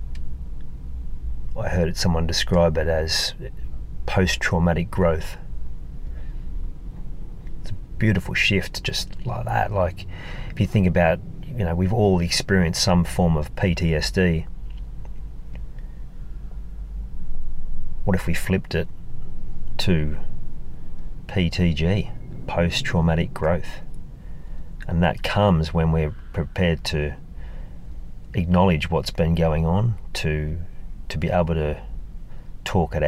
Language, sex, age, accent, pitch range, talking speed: English, male, 40-59, Australian, 65-90 Hz, 105 wpm